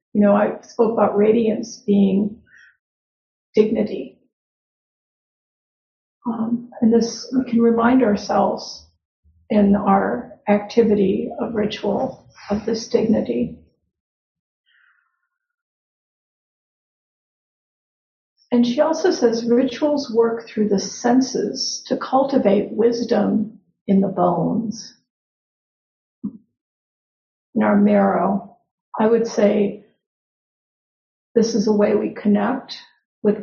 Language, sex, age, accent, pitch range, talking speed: English, female, 50-69, American, 205-245 Hz, 90 wpm